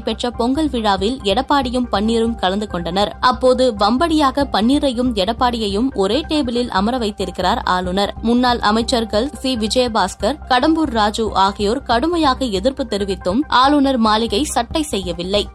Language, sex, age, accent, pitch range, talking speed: Tamil, female, 20-39, native, 210-270 Hz, 115 wpm